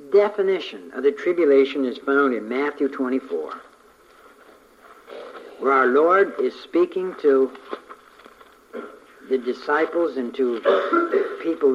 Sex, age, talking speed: male, 60-79, 100 wpm